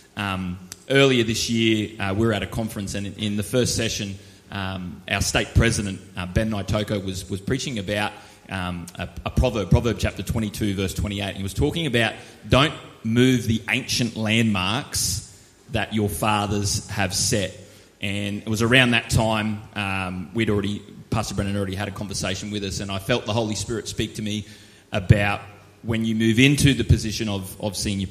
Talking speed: 185 wpm